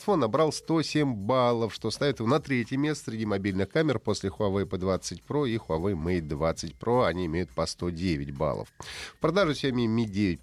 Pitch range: 95-135 Hz